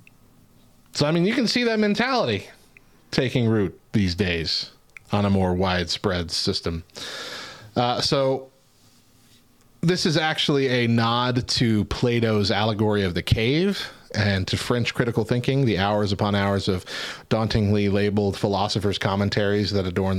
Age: 30-49